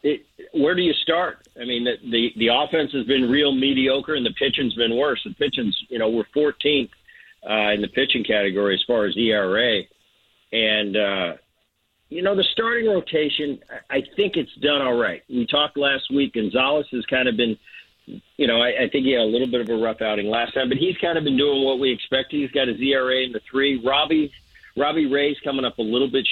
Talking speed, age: 220 wpm, 50-69